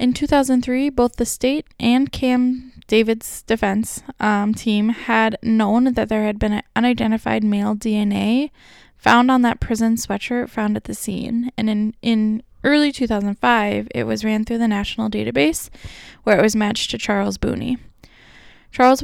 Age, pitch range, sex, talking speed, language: 10-29, 210-245 Hz, female, 155 wpm, English